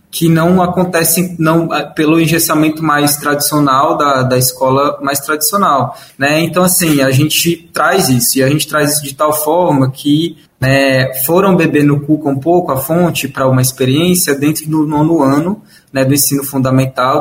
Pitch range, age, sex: 135-165 Hz, 20-39, male